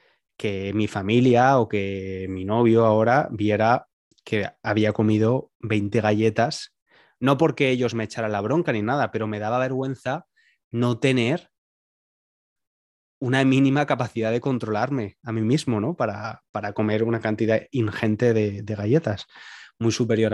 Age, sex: 20-39, male